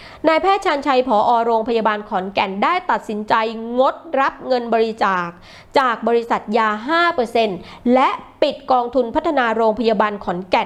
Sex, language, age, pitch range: female, Thai, 20-39, 220-290 Hz